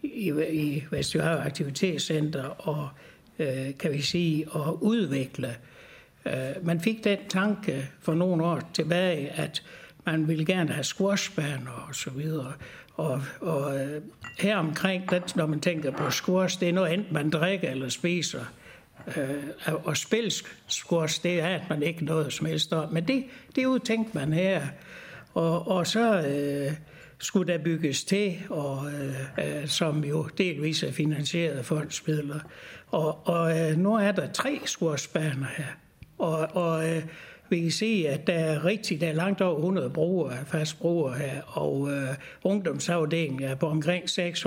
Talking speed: 165 wpm